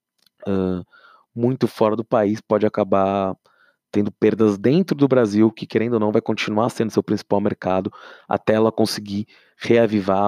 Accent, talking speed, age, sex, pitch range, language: Brazilian, 150 wpm, 20-39, male, 100-115 Hz, English